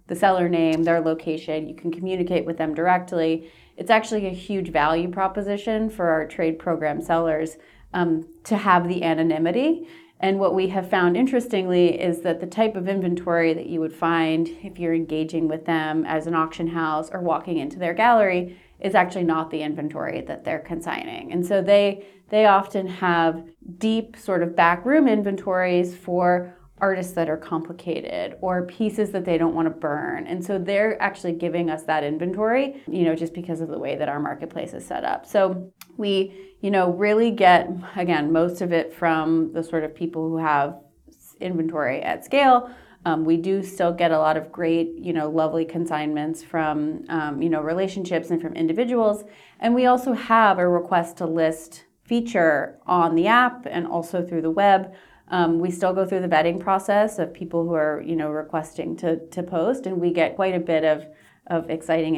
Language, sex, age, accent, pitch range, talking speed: English, female, 30-49, American, 165-190 Hz, 190 wpm